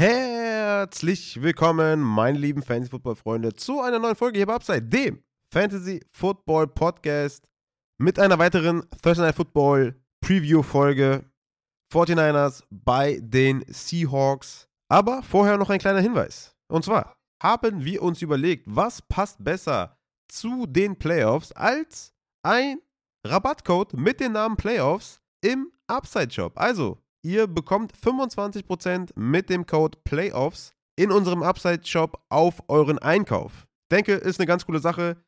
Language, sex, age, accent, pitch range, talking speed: German, male, 30-49, German, 130-185 Hz, 120 wpm